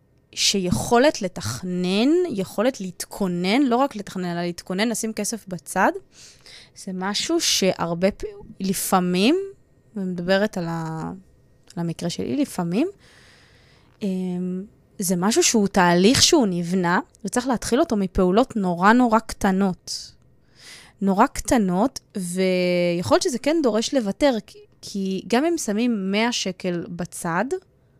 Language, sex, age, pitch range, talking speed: Hebrew, female, 20-39, 180-235 Hz, 105 wpm